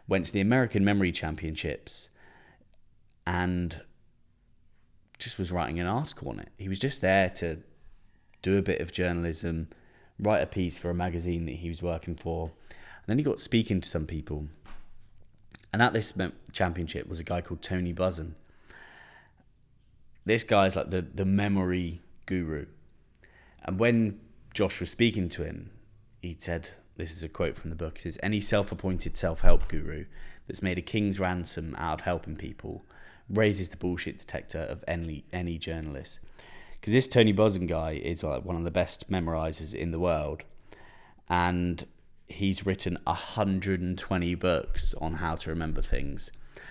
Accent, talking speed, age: British, 160 wpm, 20-39